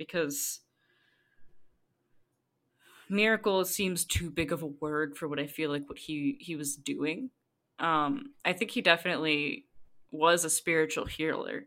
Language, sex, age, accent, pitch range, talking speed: English, female, 10-29, American, 145-175 Hz, 140 wpm